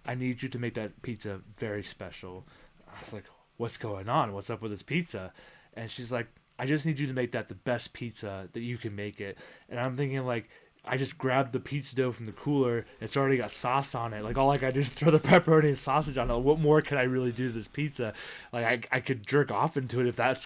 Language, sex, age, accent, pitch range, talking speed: English, male, 20-39, American, 115-140 Hz, 260 wpm